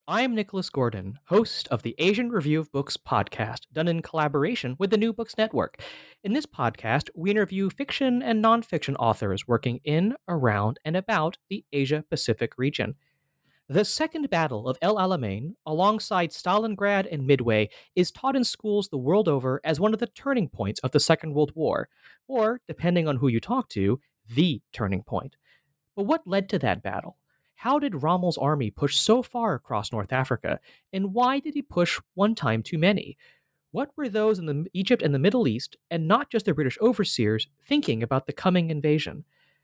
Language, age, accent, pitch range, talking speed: English, 30-49, American, 135-215 Hz, 180 wpm